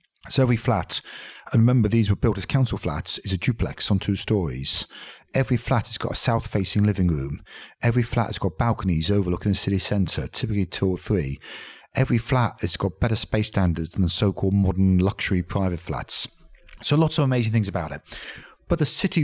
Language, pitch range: English, 95-115 Hz